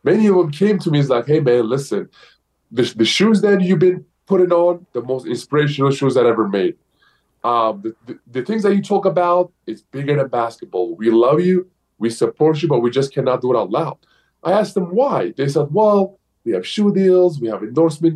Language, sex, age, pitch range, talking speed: English, male, 20-39, 130-185 Hz, 220 wpm